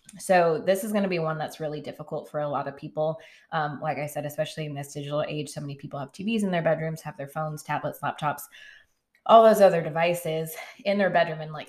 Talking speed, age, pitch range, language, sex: 235 wpm, 20-39, 145-170 Hz, English, female